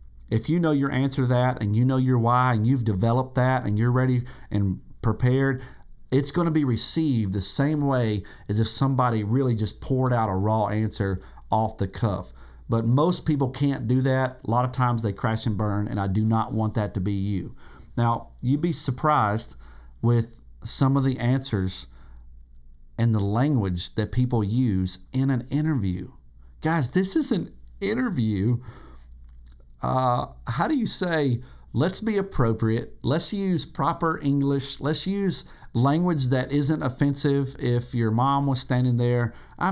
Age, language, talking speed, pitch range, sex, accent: 40-59, English, 170 wpm, 105-140 Hz, male, American